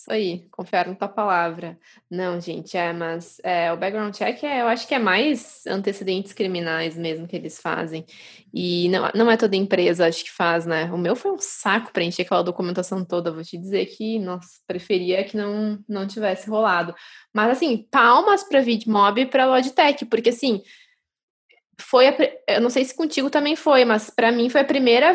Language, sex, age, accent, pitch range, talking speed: Portuguese, female, 10-29, Brazilian, 190-255 Hz, 195 wpm